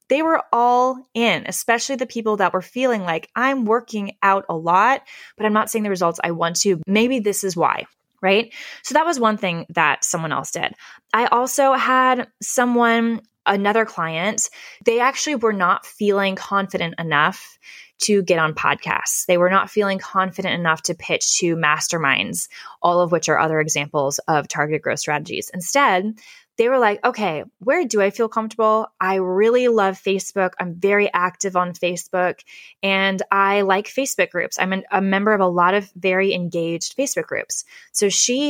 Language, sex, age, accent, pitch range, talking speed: English, female, 20-39, American, 180-230 Hz, 175 wpm